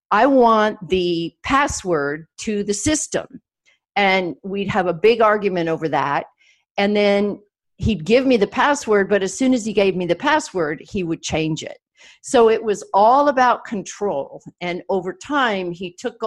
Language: English